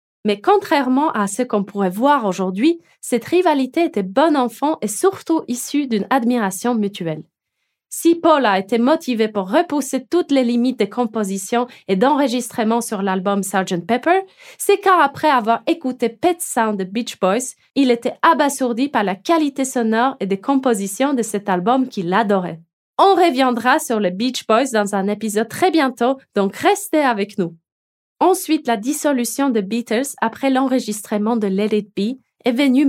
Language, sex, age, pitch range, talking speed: French, female, 20-39, 210-285 Hz, 160 wpm